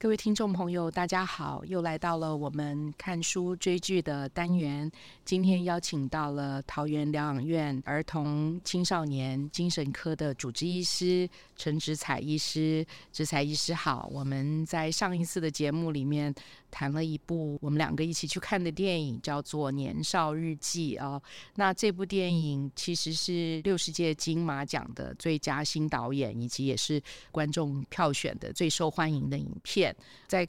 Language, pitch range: Chinese, 145-170 Hz